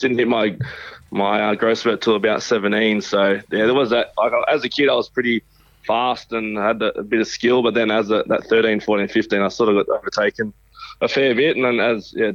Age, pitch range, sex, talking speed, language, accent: 20-39, 105-115 Hz, male, 240 wpm, English, Australian